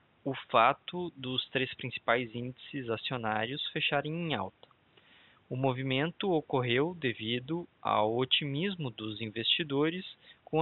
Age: 20-39